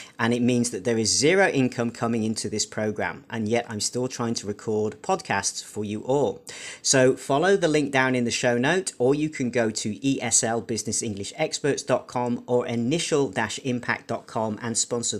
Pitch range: 110-140 Hz